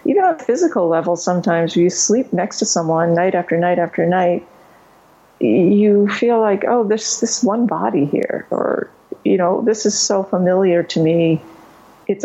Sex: female